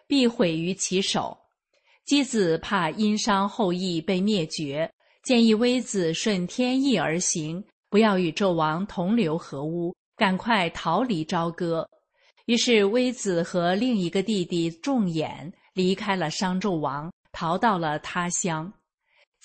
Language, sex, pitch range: Chinese, female, 175-230 Hz